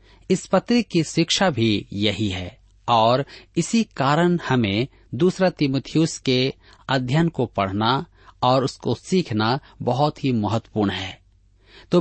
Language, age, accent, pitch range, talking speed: Hindi, 40-59, native, 105-150 Hz, 125 wpm